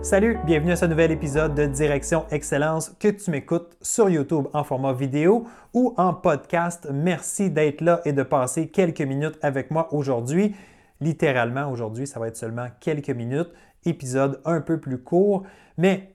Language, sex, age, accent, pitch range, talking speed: French, male, 30-49, Canadian, 135-170 Hz, 165 wpm